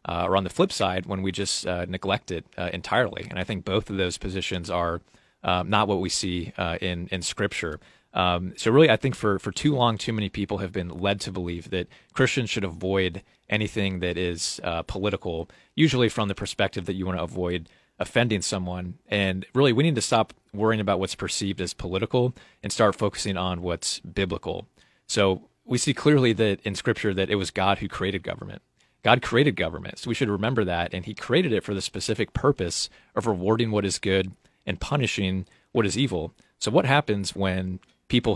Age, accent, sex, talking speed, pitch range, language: 30-49, American, male, 205 wpm, 90-110 Hz, English